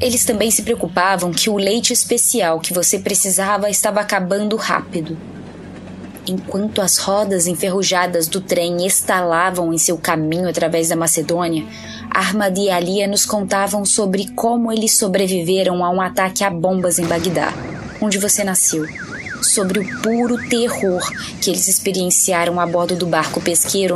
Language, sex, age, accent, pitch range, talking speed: Portuguese, female, 20-39, Brazilian, 170-205 Hz, 145 wpm